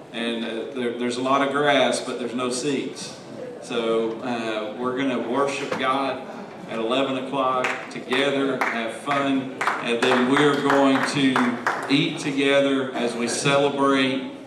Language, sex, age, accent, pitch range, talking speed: English, male, 40-59, American, 120-140 Hz, 140 wpm